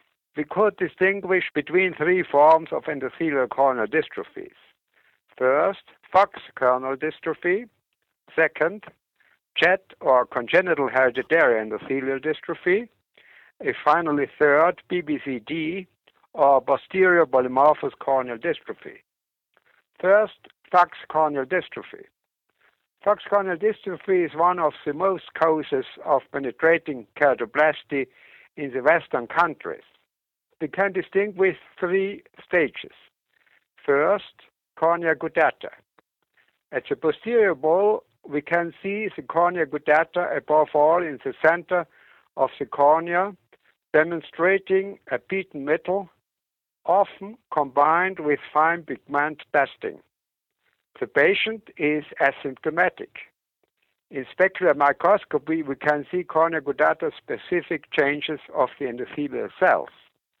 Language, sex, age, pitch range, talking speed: English, male, 60-79, 145-185 Hz, 100 wpm